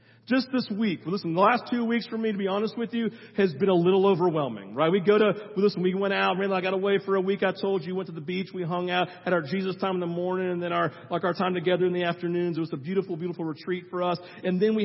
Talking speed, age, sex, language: 295 wpm, 40-59, male, English